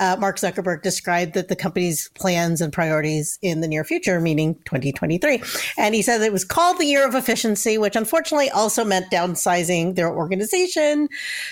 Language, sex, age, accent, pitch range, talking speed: English, female, 40-59, American, 175-230 Hz, 170 wpm